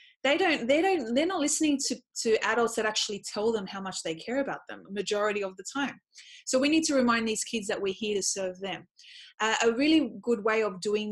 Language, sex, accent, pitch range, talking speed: English, female, Australian, 205-275 Hz, 235 wpm